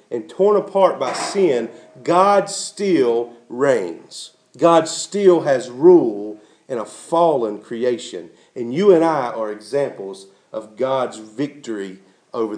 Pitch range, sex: 120-200 Hz, male